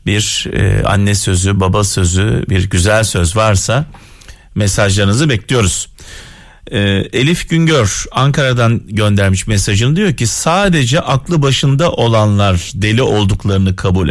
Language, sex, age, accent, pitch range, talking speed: Turkish, male, 40-59, native, 95-135 Hz, 105 wpm